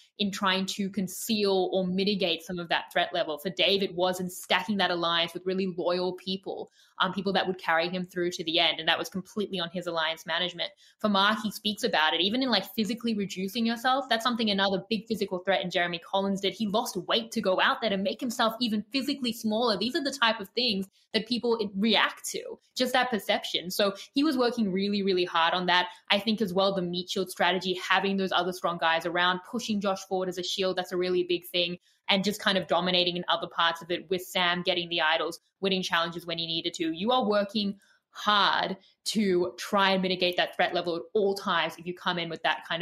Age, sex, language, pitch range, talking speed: 20-39, female, English, 180-215 Hz, 230 wpm